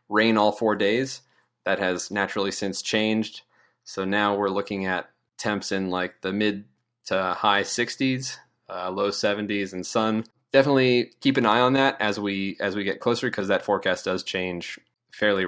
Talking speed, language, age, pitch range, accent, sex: 175 wpm, English, 20-39, 100-125 Hz, American, male